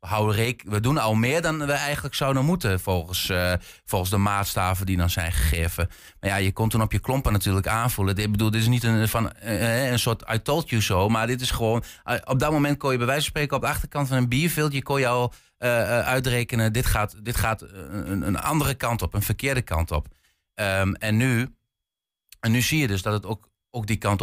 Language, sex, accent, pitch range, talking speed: Dutch, male, Dutch, 95-115 Hz, 235 wpm